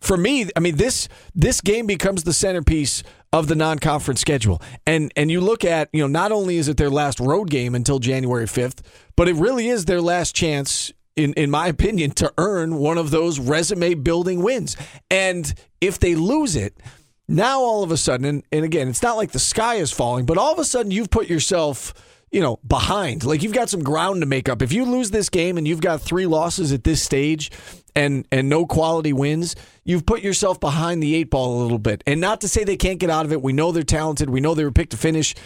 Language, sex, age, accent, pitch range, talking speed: English, male, 40-59, American, 145-185 Hz, 235 wpm